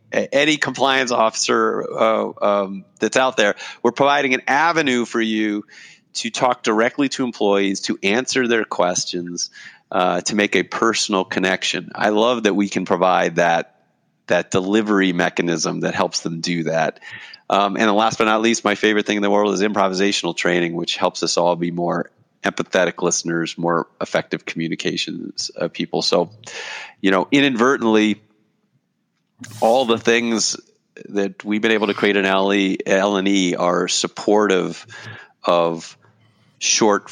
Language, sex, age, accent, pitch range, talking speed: English, male, 30-49, American, 90-115 Hz, 150 wpm